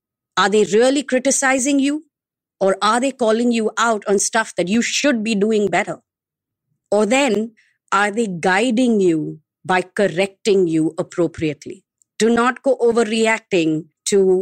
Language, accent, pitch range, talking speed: English, Indian, 170-220 Hz, 140 wpm